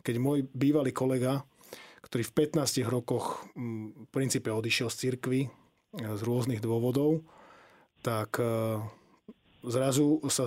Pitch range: 120-140 Hz